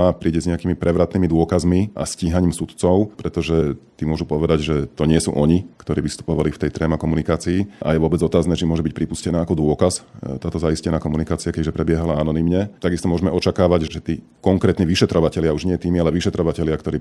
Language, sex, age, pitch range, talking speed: Slovak, male, 40-59, 80-90 Hz, 185 wpm